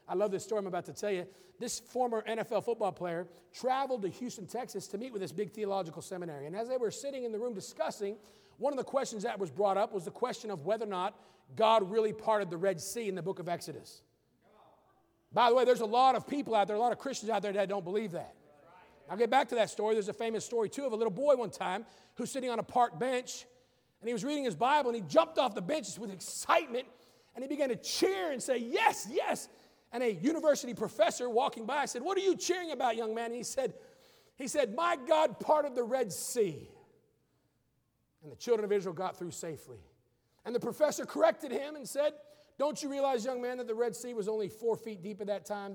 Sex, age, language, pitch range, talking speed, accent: male, 40-59, English, 190-250 Hz, 240 wpm, American